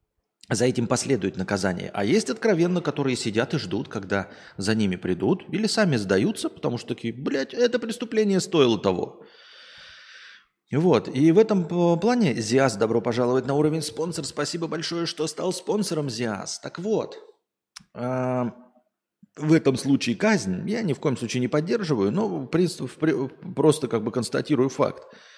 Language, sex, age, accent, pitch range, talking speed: Russian, male, 30-49, native, 120-205 Hz, 155 wpm